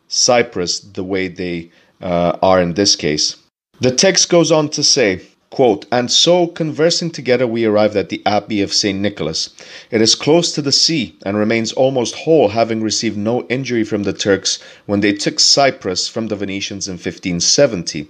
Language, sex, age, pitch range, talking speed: English, male, 40-59, 100-135 Hz, 180 wpm